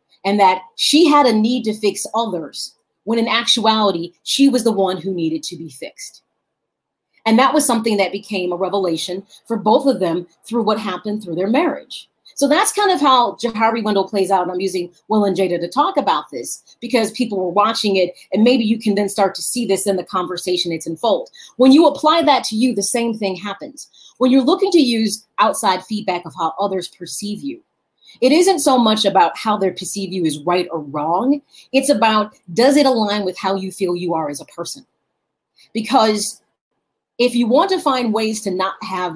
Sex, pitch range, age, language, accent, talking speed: female, 185-255 Hz, 30-49, English, American, 205 wpm